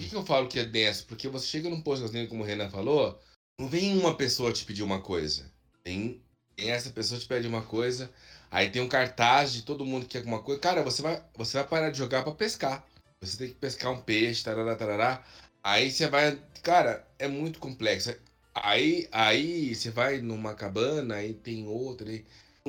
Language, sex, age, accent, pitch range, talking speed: Portuguese, male, 20-39, Brazilian, 110-155 Hz, 210 wpm